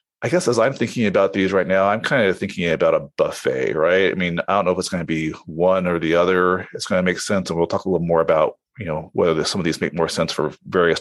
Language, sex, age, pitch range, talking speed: English, male, 30-49, 85-105 Hz, 295 wpm